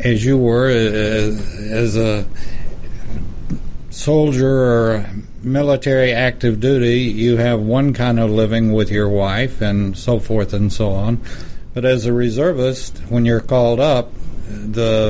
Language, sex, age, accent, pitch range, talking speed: English, male, 60-79, American, 110-135 Hz, 140 wpm